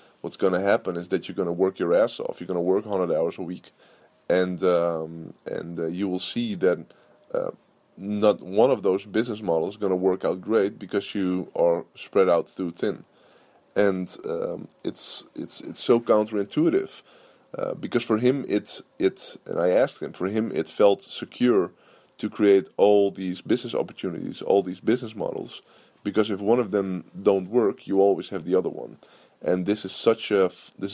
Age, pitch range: 20-39, 90-105 Hz